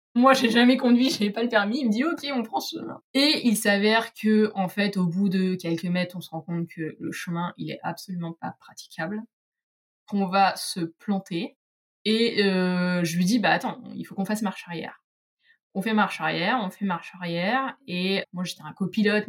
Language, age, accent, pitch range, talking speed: French, 20-39, French, 175-220 Hz, 220 wpm